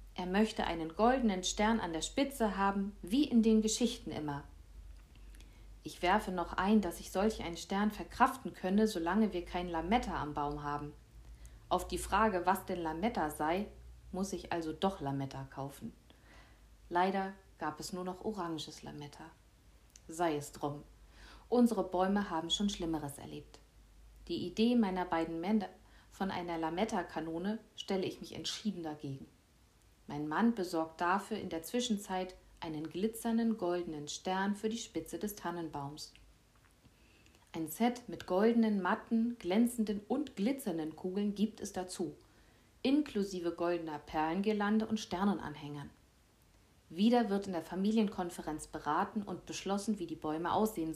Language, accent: German, German